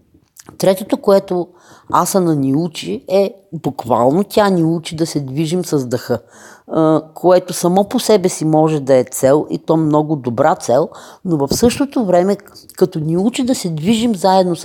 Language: Bulgarian